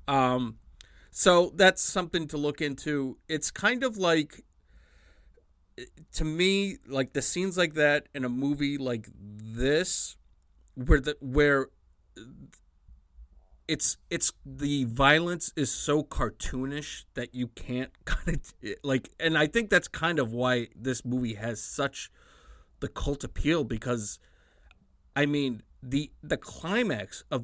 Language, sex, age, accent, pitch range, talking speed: English, male, 30-49, American, 115-155 Hz, 130 wpm